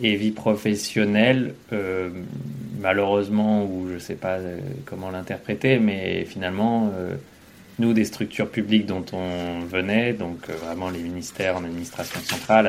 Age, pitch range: 20-39, 90-110 Hz